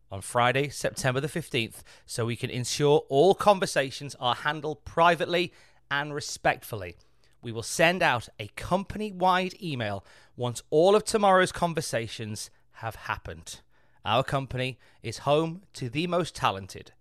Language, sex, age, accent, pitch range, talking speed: English, male, 30-49, British, 110-140 Hz, 135 wpm